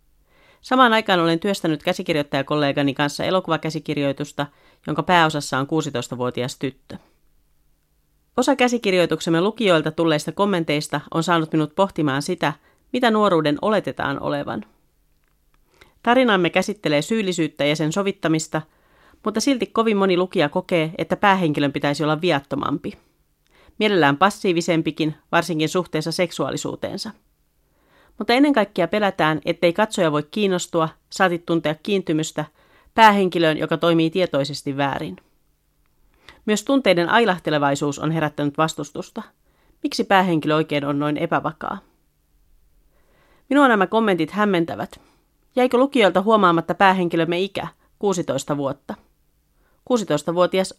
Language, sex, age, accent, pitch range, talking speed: Finnish, female, 40-59, native, 145-190 Hz, 105 wpm